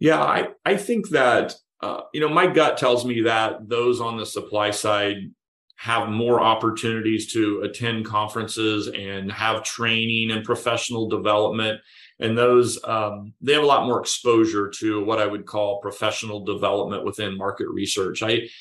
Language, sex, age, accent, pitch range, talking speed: English, male, 40-59, American, 110-125 Hz, 160 wpm